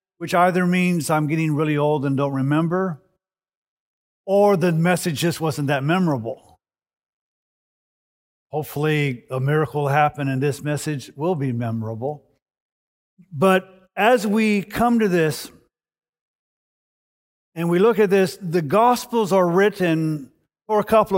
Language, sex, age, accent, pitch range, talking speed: English, male, 50-69, American, 155-205 Hz, 130 wpm